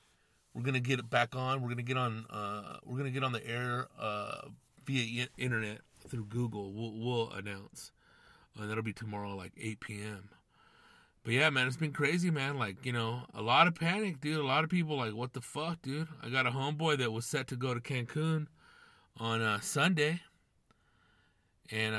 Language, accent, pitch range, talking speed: English, American, 115-165 Hz, 195 wpm